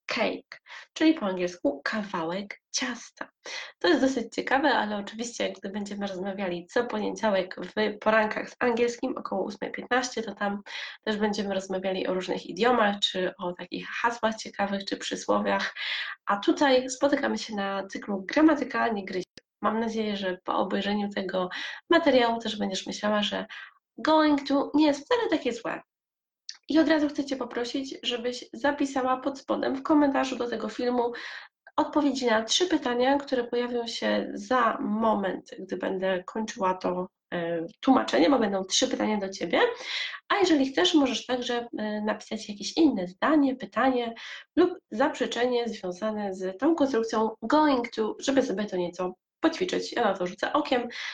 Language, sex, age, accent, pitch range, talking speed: Polish, female, 20-39, native, 195-275 Hz, 150 wpm